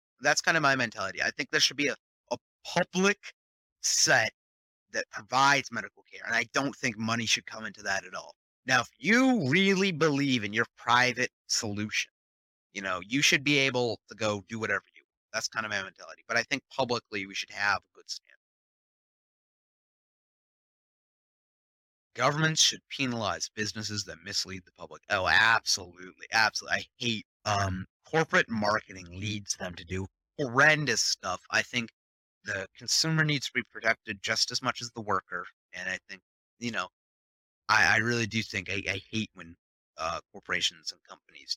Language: English